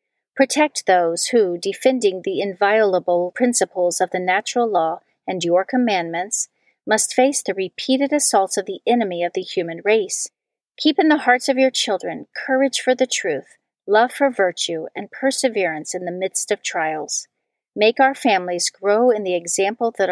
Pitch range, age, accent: 185-255 Hz, 40-59, American